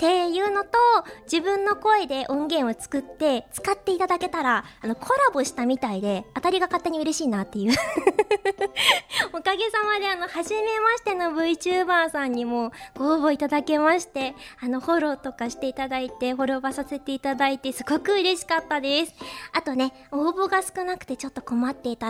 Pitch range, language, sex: 255-345 Hz, Japanese, male